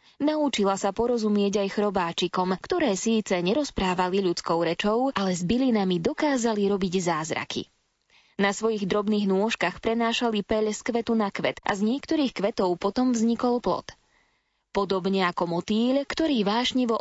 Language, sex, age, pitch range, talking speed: Slovak, female, 20-39, 195-250 Hz, 135 wpm